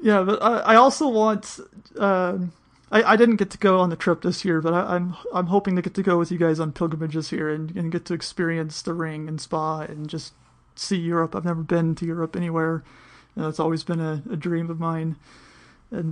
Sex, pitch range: male, 165-200 Hz